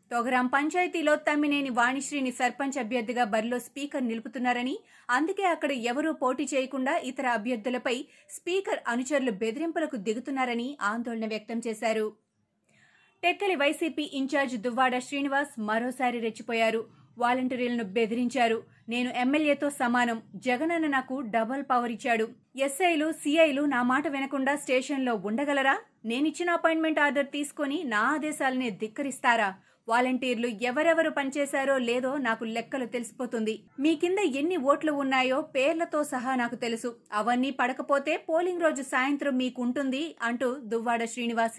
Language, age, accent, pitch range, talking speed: Telugu, 30-49, native, 235-285 Hz, 115 wpm